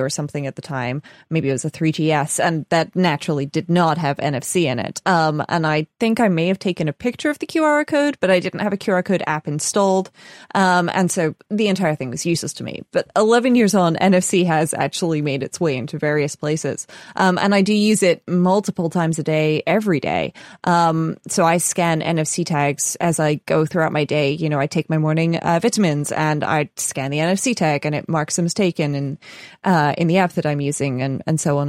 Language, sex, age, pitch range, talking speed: English, female, 20-39, 150-185 Hz, 235 wpm